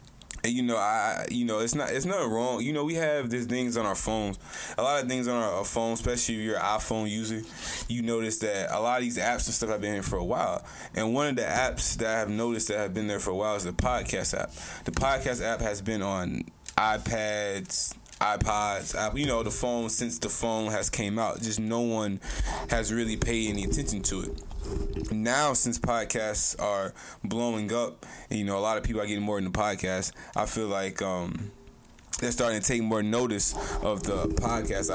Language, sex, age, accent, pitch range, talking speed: English, male, 20-39, American, 100-115 Hz, 215 wpm